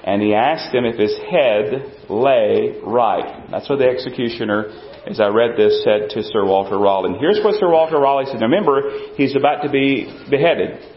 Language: English